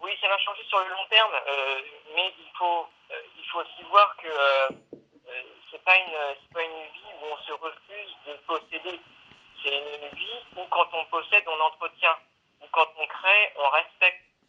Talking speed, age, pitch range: 190 wpm, 50-69, 135-180 Hz